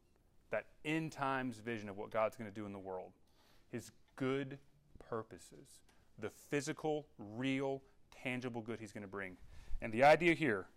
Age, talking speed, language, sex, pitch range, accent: 30-49, 160 wpm, English, male, 105-135 Hz, American